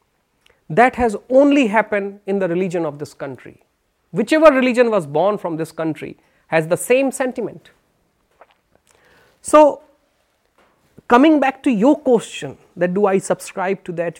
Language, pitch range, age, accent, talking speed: Hindi, 165-230 Hz, 30-49, native, 140 wpm